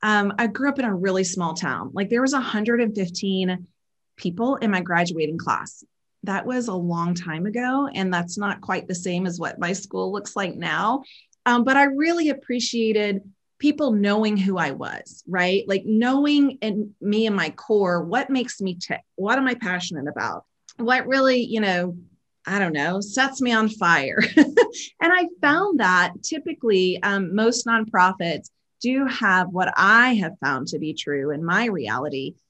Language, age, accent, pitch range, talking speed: English, 30-49, American, 180-250 Hz, 175 wpm